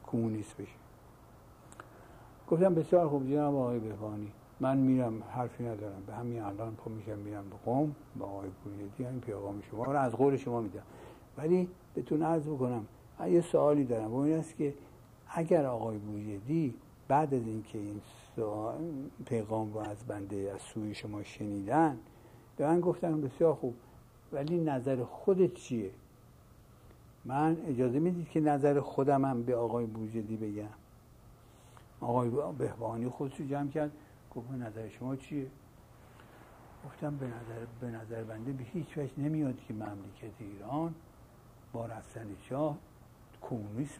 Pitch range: 110-145 Hz